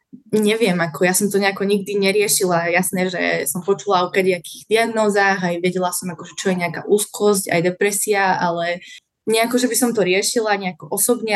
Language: Slovak